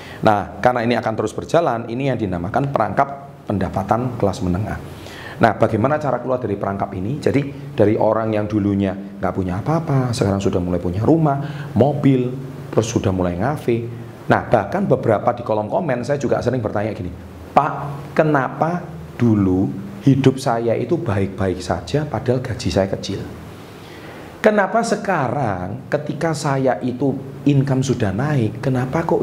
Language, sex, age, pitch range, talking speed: Indonesian, male, 40-59, 100-140 Hz, 145 wpm